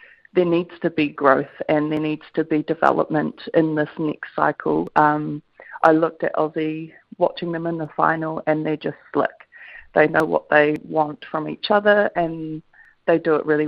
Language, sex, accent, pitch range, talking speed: English, female, Australian, 155-170 Hz, 185 wpm